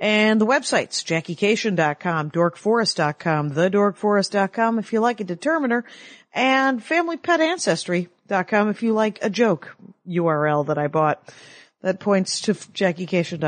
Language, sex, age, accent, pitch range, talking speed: English, female, 40-59, American, 180-240 Hz, 110 wpm